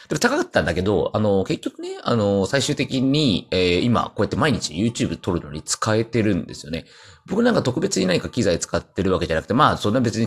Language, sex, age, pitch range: Japanese, male, 40-59, 90-130 Hz